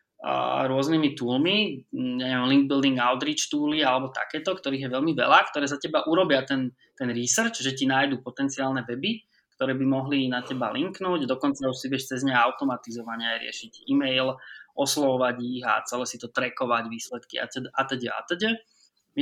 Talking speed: 180 wpm